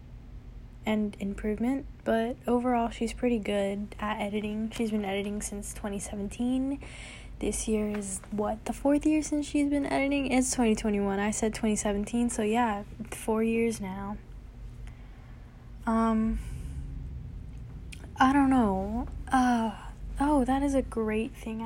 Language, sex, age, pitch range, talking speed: English, female, 10-29, 205-240 Hz, 125 wpm